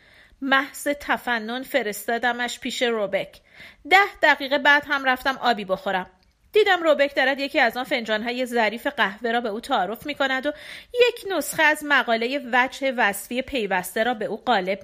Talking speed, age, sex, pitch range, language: 150 wpm, 40-59, female, 220-285 Hz, Persian